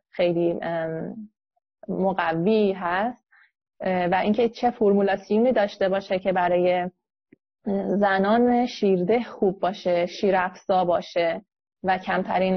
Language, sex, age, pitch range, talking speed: Persian, female, 30-49, 185-235 Hz, 90 wpm